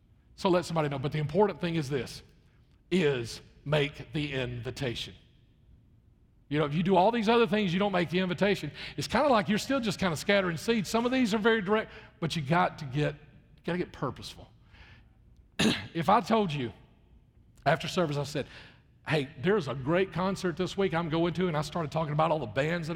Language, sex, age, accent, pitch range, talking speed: English, male, 40-59, American, 140-180 Hz, 205 wpm